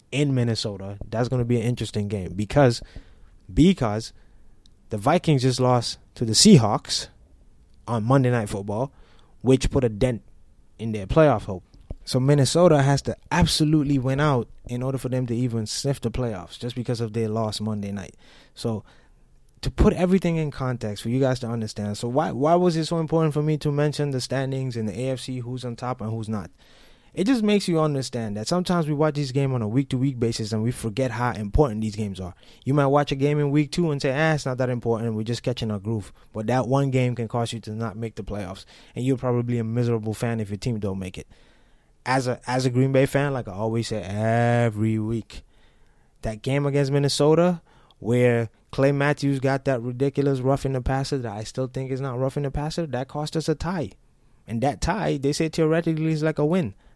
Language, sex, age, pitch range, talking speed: English, male, 20-39, 110-140 Hz, 210 wpm